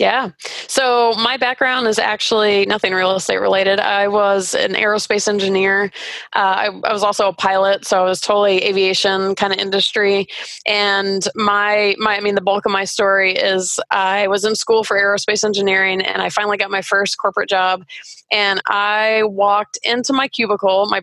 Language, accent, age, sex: English, American, 20-39, female